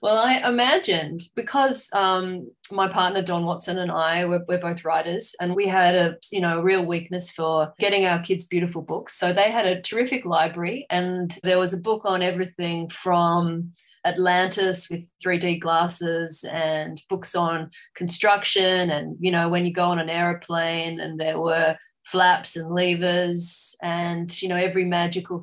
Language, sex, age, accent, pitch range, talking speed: English, female, 20-39, Australian, 175-195 Hz, 170 wpm